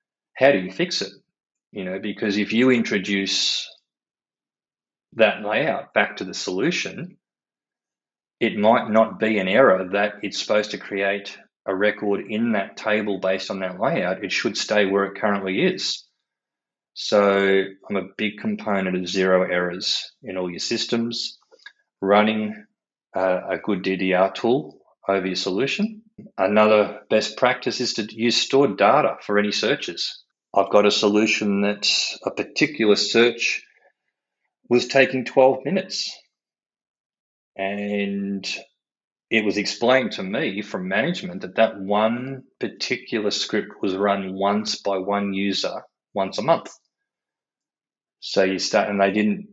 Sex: male